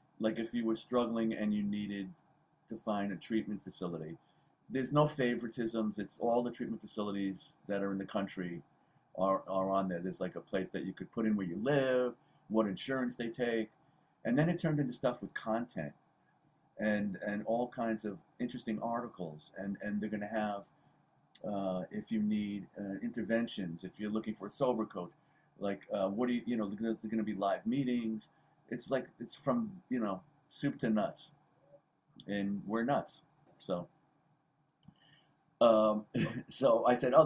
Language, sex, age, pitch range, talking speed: English, male, 50-69, 105-140 Hz, 175 wpm